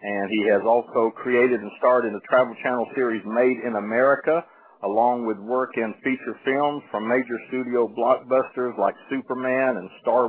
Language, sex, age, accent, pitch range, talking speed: English, male, 50-69, American, 115-130 Hz, 170 wpm